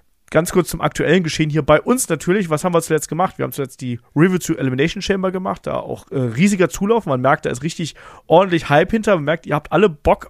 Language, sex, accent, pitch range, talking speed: German, male, German, 140-195 Hz, 245 wpm